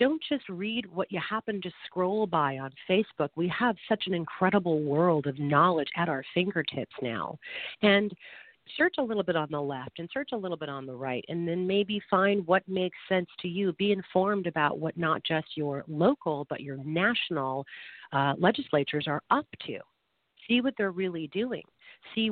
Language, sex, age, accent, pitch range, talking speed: English, female, 40-59, American, 150-205 Hz, 190 wpm